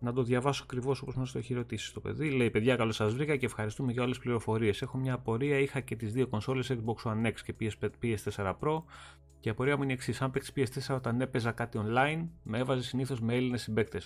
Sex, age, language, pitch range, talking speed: male, 30-49, Greek, 105-130 Hz, 235 wpm